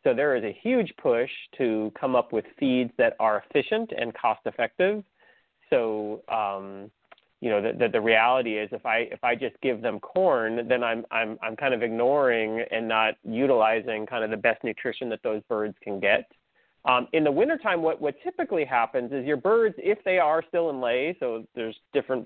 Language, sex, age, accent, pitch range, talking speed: English, male, 30-49, American, 115-165 Hz, 200 wpm